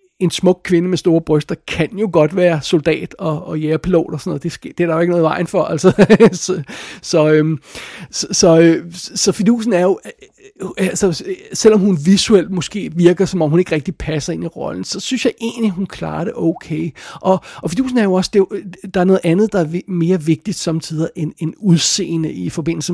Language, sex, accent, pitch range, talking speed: Danish, male, native, 160-195 Hz, 215 wpm